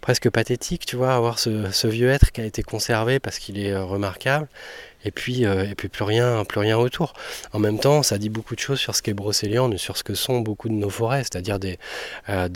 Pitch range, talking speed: 100-120 Hz, 240 wpm